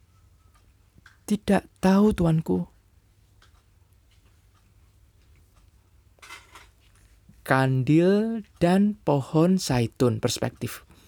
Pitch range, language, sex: 95-150 Hz, Indonesian, male